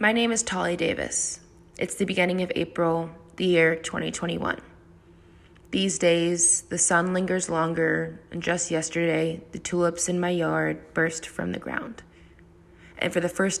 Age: 20-39